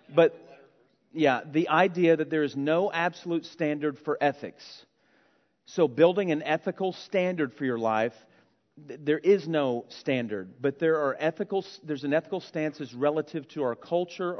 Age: 40-59